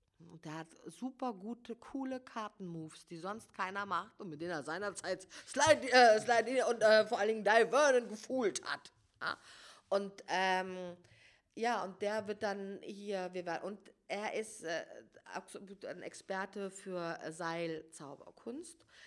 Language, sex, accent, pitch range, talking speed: German, female, German, 165-225 Hz, 140 wpm